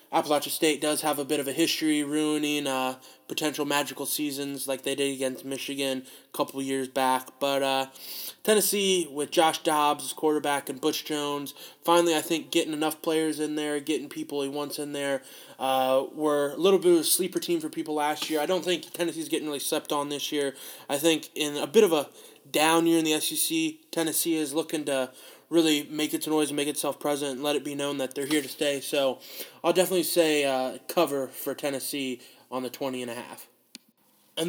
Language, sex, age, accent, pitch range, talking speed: English, male, 20-39, American, 145-170 Hz, 210 wpm